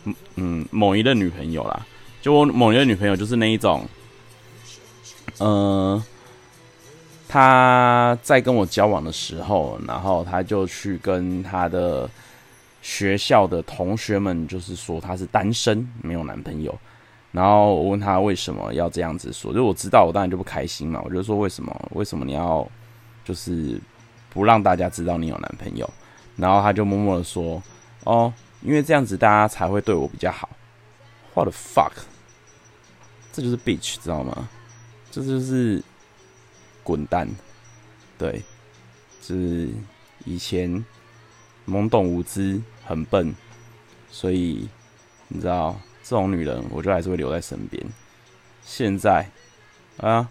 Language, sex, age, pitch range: Chinese, male, 20-39, 90-115 Hz